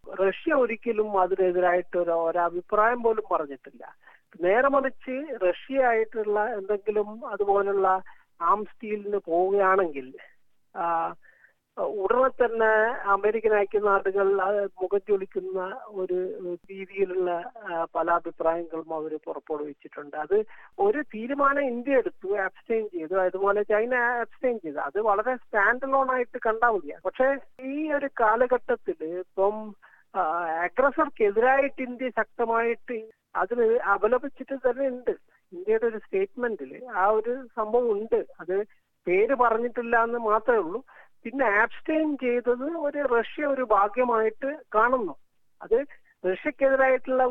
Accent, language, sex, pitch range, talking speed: native, Malayalam, male, 195-265 Hz, 100 wpm